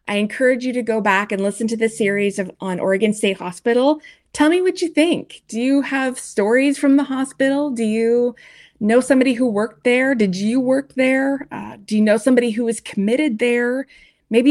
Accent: American